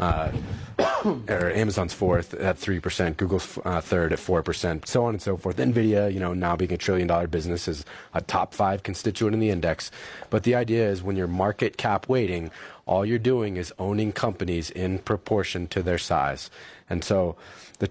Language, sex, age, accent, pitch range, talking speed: English, male, 30-49, American, 95-120 Hz, 185 wpm